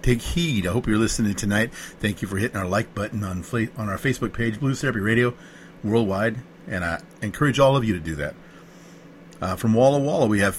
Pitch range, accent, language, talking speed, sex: 100-130 Hz, American, English, 220 wpm, male